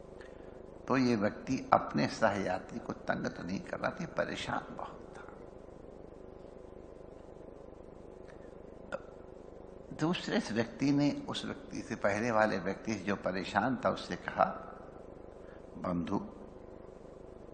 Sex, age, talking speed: male, 60-79, 105 wpm